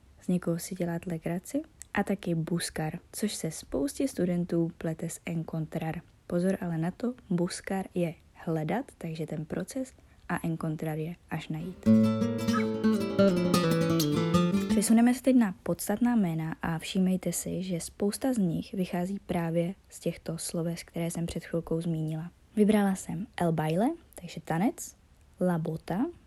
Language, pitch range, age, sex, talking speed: Czech, 165-195 Hz, 20-39, female, 135 wpm